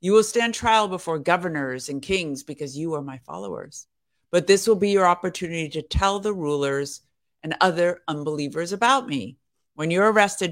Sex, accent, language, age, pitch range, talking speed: female, American, English, 50-69, 145-185 Hz, 175 wpm